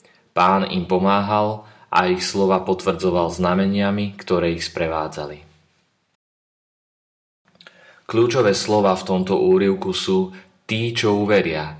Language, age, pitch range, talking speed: Slovak, 30-49, 85-100 Hz, 100 wpm